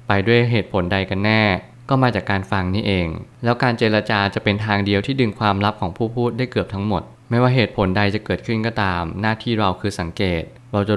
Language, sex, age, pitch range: Thai, male, 20-39, 100-120 Hz